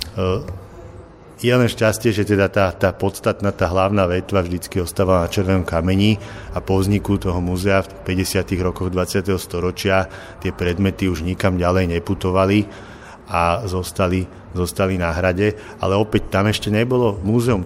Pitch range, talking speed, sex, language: 90-105 Hz, 150 wpm, male, Slovak